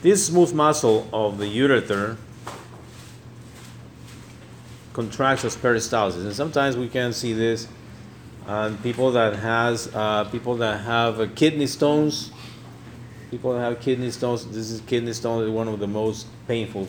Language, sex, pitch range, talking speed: English, male, 105-120 Hz, 140 wpm